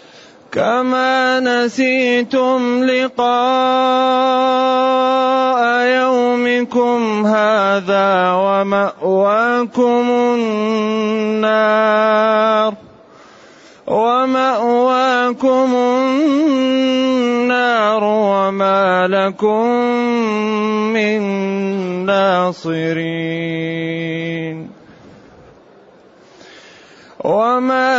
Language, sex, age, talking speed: Arabic, male, 30-49, 30 wpm